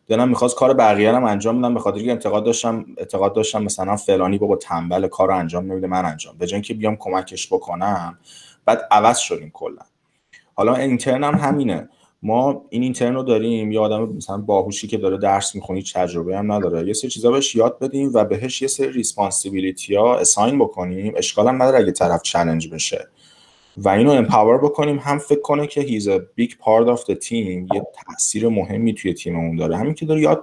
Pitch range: 90-120 Hz